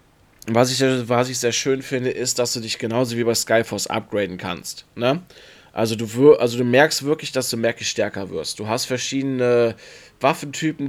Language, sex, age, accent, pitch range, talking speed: German, male, 20-39, German, 115-135 Hz, 160 wpm